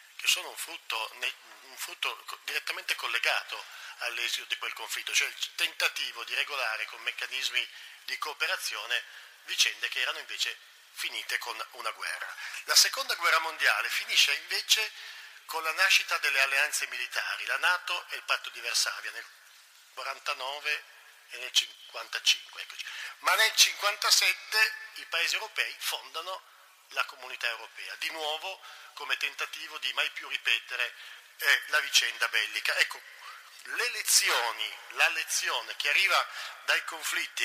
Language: Italian